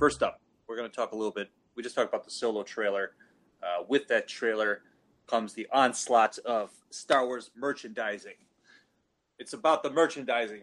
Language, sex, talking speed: English, male, 175 wpm